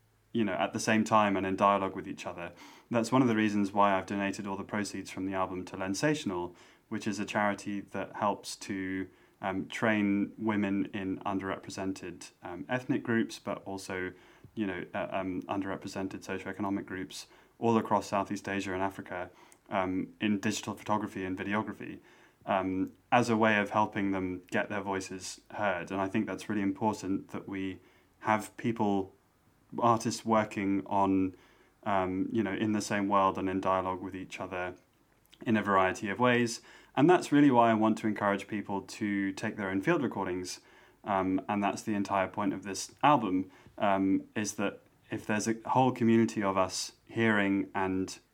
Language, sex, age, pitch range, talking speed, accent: English, male, 20-39, 95-110 Hz, 175 wpm, British